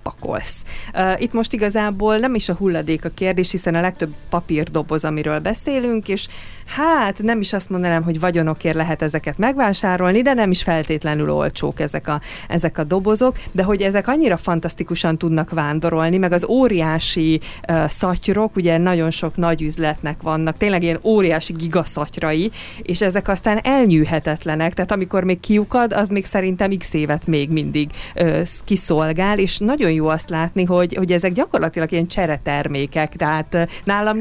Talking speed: 160 wpm